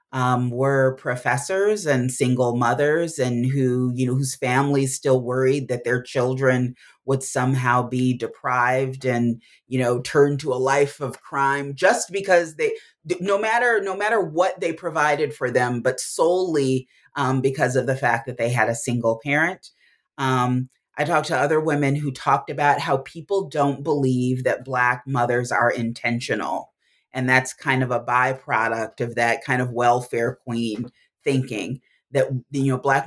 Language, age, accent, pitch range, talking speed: English, 30-49, American, 125-140 Hz, 165 wpm